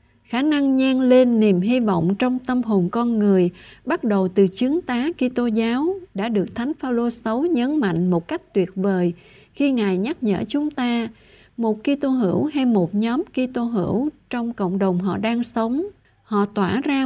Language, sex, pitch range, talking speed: Vietnamese, female, 195-265 Hz, 190 wpm